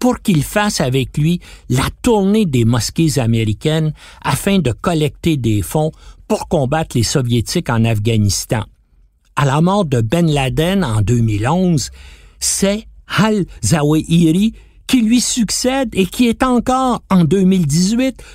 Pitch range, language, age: 125-195 Hz, French, 60-79